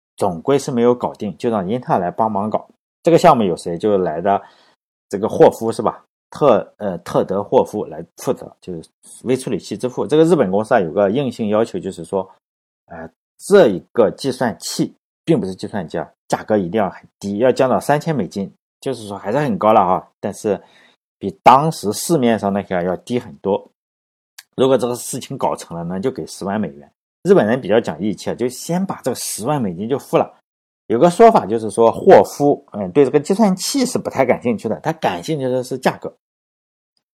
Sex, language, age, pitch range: male, Chinese, 50-69, 100-145 Hz